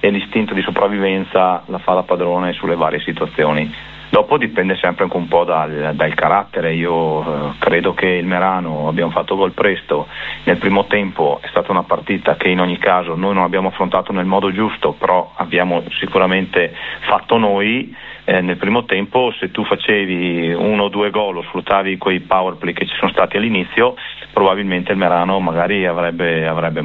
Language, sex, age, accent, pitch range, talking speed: Italian, male, 40-59, native, 85-95 Hz, 180 wpm